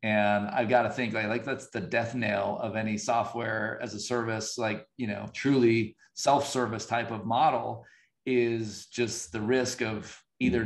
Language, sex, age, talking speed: English, male, 30-49, 175 wpm